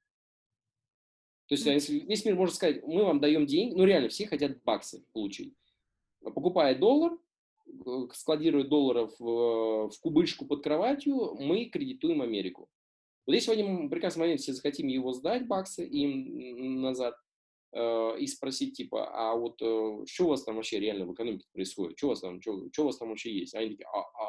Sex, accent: male, native